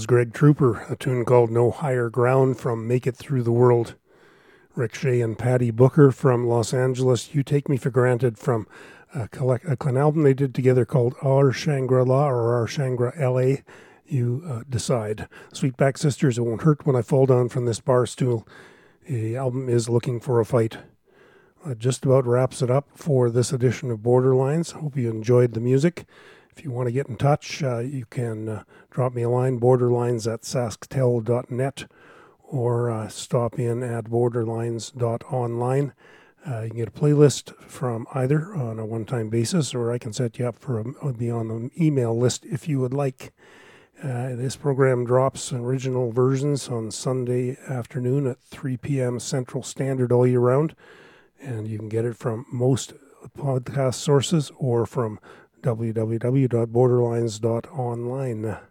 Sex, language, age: male, English, 40-59